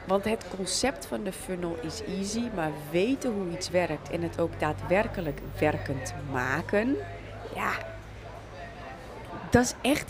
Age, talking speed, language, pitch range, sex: 30-49, 135 wpm, Dutch, 145-195 Hz, female